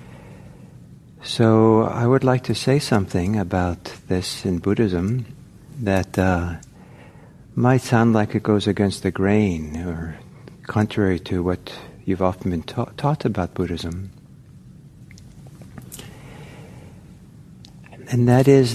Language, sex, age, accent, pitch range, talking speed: English, male, 60-79, American, 95-120 Hz, 110 wpm